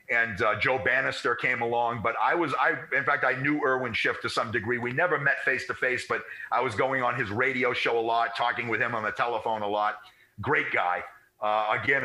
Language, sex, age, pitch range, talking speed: English, male, 50-69, 110-145 Hz, 235 wpm